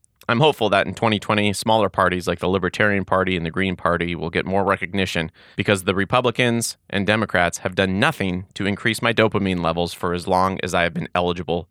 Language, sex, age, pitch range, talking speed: English, male, 30-49, 90-110 Hz, 205 wpm